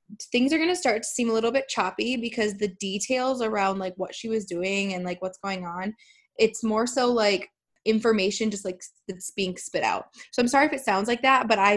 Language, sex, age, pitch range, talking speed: English, female, 20-39, 195-240 Hz, 235 wpm